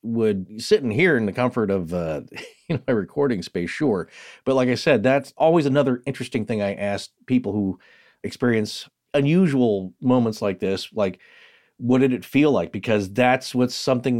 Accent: American